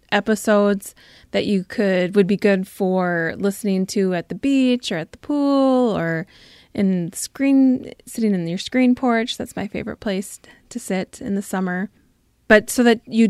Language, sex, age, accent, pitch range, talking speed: English, female, 20-39, American, 185-235 Hz, 170 wpm